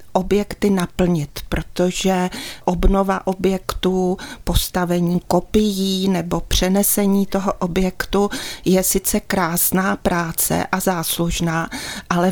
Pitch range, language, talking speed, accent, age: 180-195 Hz, Czech, 90 wpm, native, 40-59